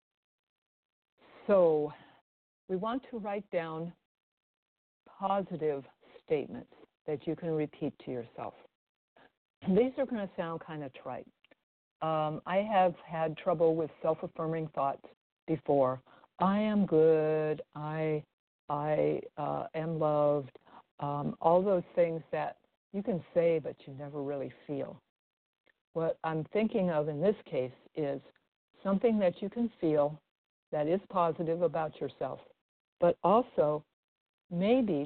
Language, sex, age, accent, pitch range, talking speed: English, female, 60-79, American, 150-195 Hz, 125 wpm